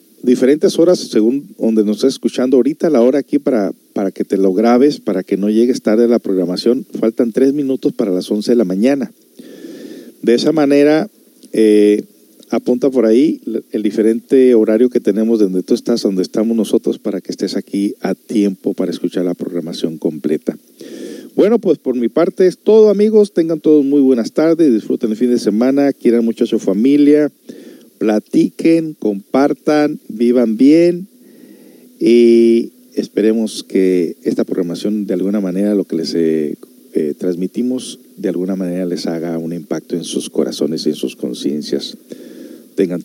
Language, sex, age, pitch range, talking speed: Spanish, male, 50-69, 95-135 Hz, 165 wpm